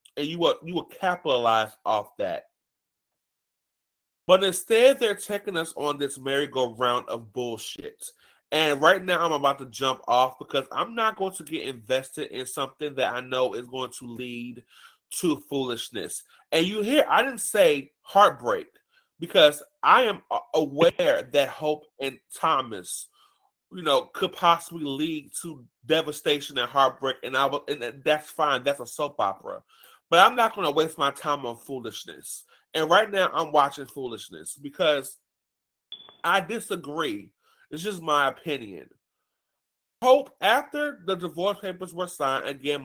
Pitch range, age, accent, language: 140-200 Hz, 30-49, American, English